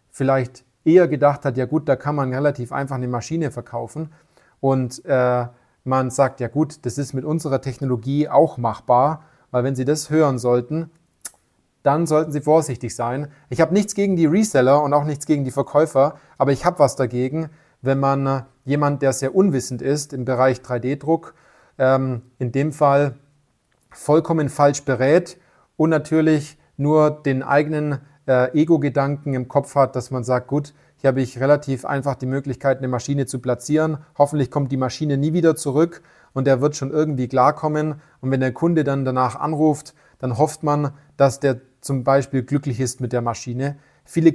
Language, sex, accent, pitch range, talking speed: German, male, German, 130-150 Hz, 175 wpm